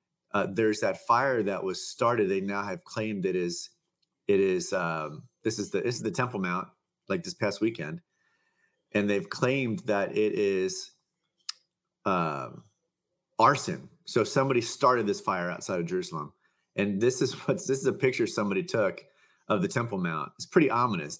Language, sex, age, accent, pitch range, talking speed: English, male, 30-49, American, 100-145 Hz, 175 wpm